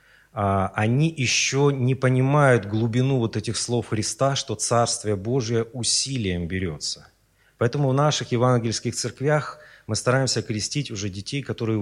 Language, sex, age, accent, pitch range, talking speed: Russian, male, 30-49, native, 105-140 Hz, 125 wpm